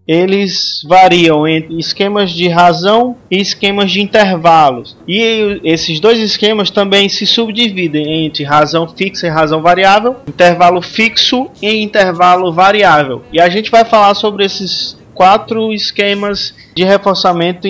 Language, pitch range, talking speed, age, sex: Portuguese, 170-205 Hz, 130 wpm, 20-39, male